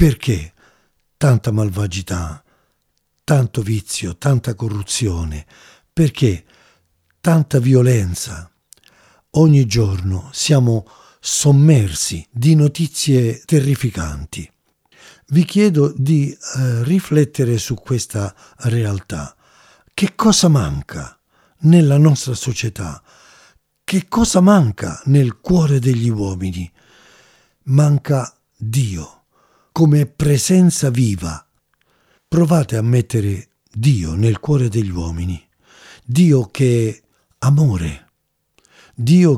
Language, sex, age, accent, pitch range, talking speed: Italian, male, 50-69, native, 100-150 Hz, 85 wpm